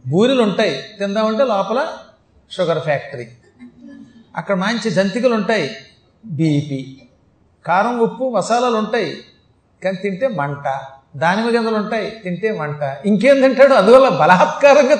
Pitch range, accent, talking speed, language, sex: 155-220 Hz, native, 100 wpm, Telugu, male